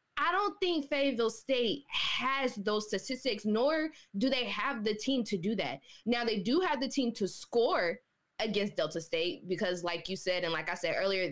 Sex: female